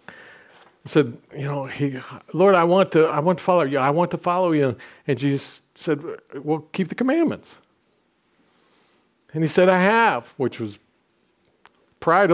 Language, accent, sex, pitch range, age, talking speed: English, American, male, 125-165 Hz, 50-69, 165 wpm